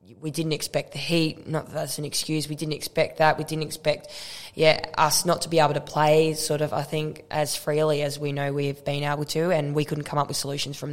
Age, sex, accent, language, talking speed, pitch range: 10-29, female, Australian, English, 255 wpm, 145-155 Hz